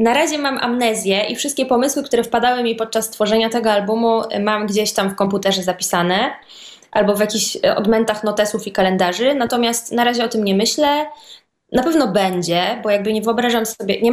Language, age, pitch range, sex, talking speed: Polish, 20-39, 195-230 Hz, female, 185 wpm